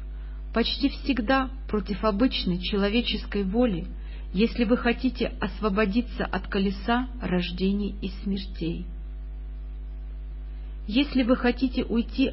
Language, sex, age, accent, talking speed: Russian, female, 40-59, native, 90 wpm